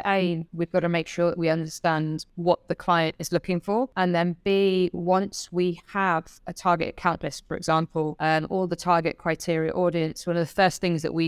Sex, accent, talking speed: female, British, 215 wpm